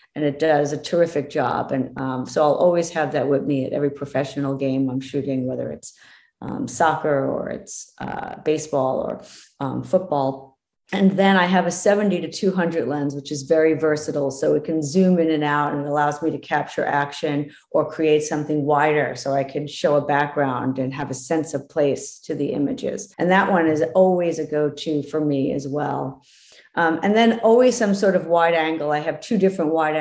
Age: 40-59